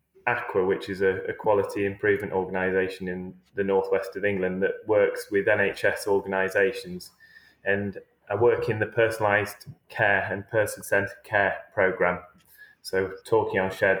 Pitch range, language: 95-140 Hz, English